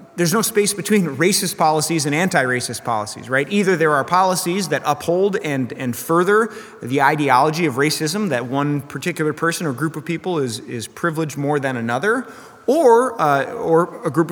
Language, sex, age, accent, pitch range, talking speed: English, male, 30-49, American, 135-180 Hz, 175 wpm